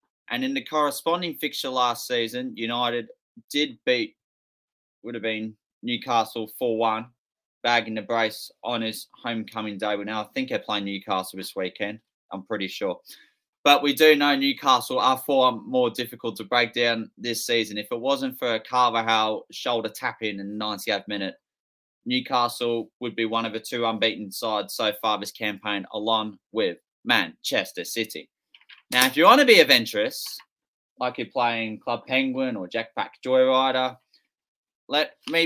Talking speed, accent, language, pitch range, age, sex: 160 wpm, Australian, English, 110-130 Hz, 20-39, male